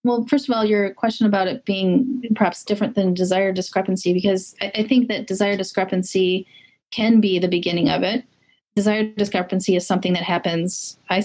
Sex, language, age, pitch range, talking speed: female, English, 30-49, 185-220 Hz, 180 wpm